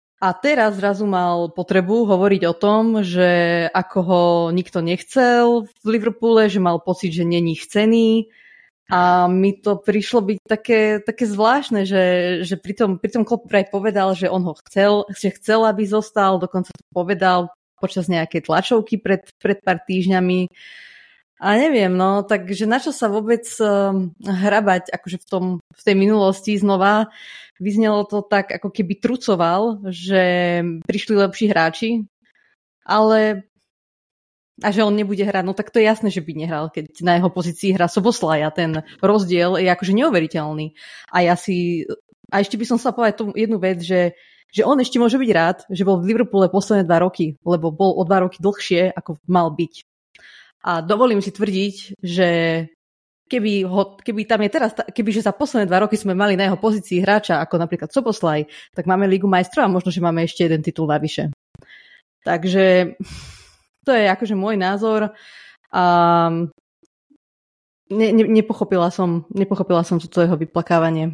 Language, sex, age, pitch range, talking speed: Slovak, female, 20-39, 180-215 Hz, 160 wpm